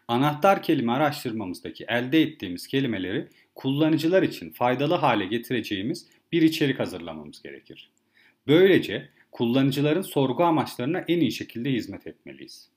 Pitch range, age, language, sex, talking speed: 120-160 Hz, 40-59, Turkish, male, 115 wpm